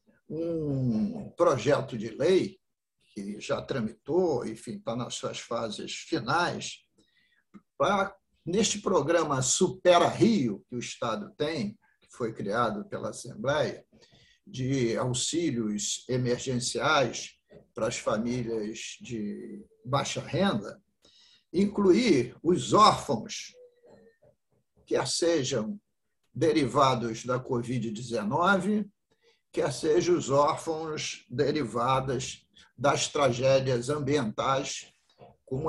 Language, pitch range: Portuguese, 125-200 Hz